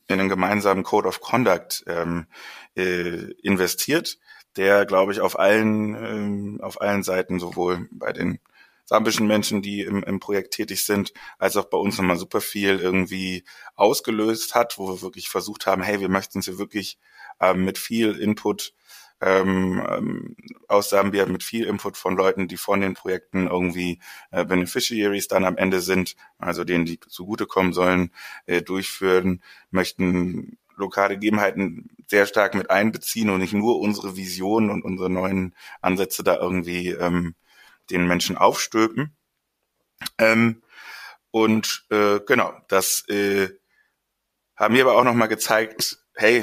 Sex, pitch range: male, 90-105 Hz